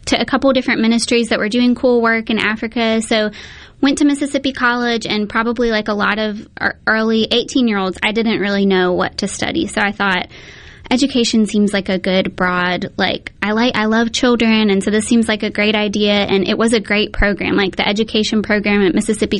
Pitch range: 205-230 Hz